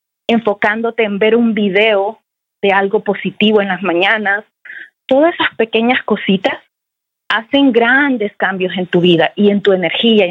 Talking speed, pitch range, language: 150 wpm, 195-230 Hz, Spanish